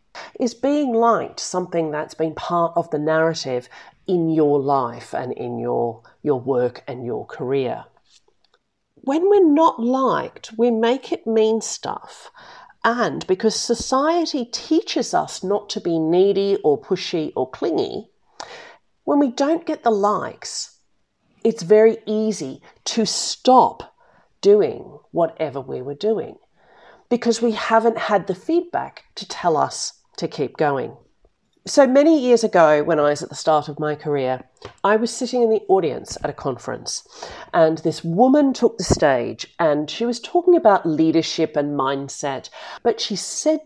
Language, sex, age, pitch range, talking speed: English, female, 40-59, 160-260 Hz, 150 wpm